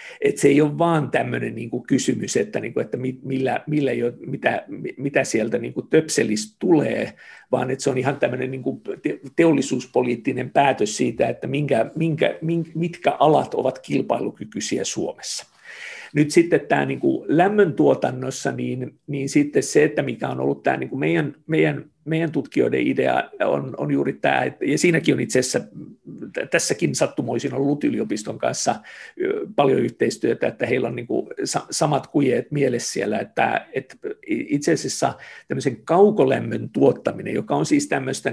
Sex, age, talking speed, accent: male, 50-69, 160 wpm, native